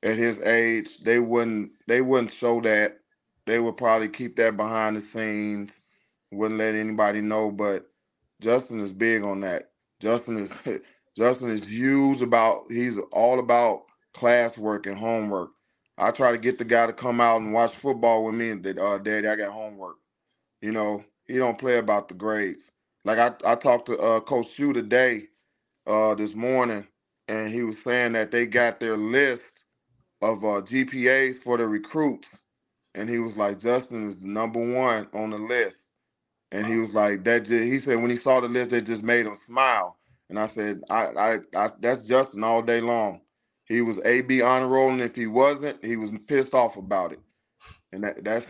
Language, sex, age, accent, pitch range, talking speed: English, male, 20-39, American, 110-130 Hz, 185 wpm